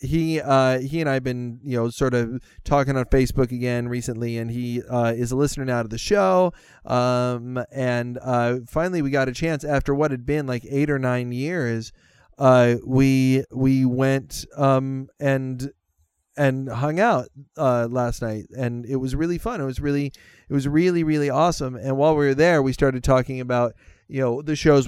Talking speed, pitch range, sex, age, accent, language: 195 wpm, 125-145 Hz, male, 30-49, American, English